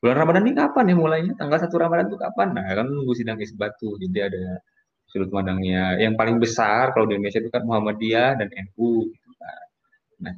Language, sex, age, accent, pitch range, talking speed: Indonesian, male, 20-39, native, 100-140 Hz, 180 wpm